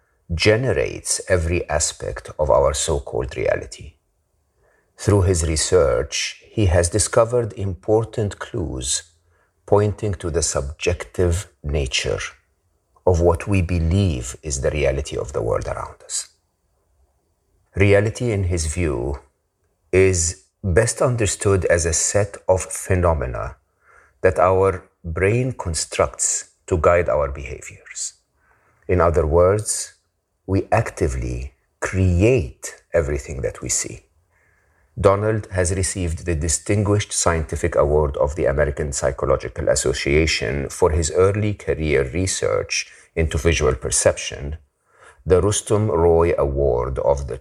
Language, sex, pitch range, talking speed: English, male, 80-100 Hz, 115 wpm